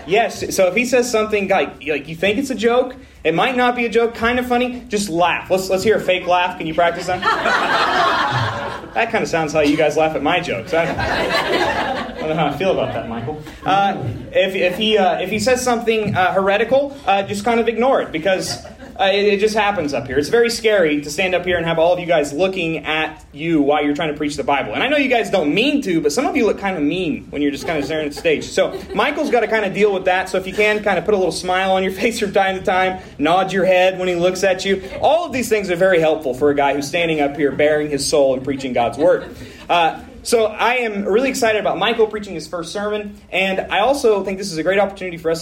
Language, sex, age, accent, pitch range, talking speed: English, male, 30-49, American, 160-215 Hz, 270 wpm